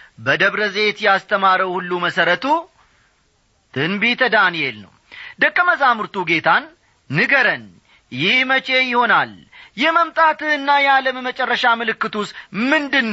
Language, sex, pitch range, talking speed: Amharic, male, 165-255 Hz, 80 wpm